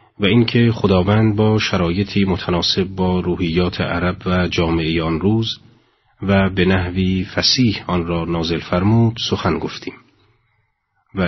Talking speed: 130 wpm